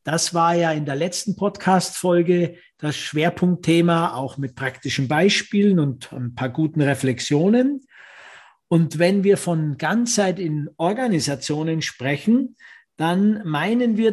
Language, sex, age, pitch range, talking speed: German, male, 50-69, 160-205 Hz, 125 wpm